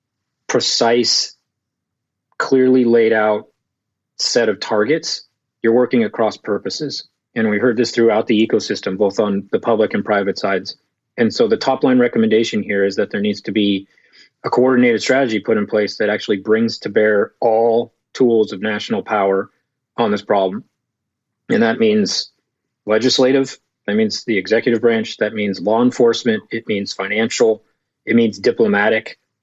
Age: 30-49